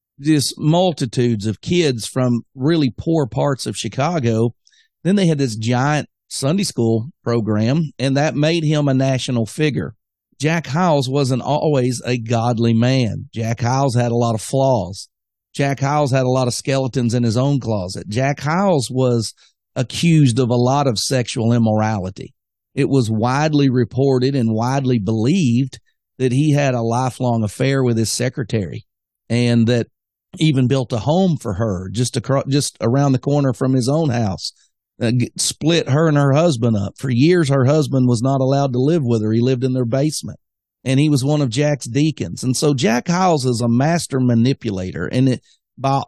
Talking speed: 175 wpm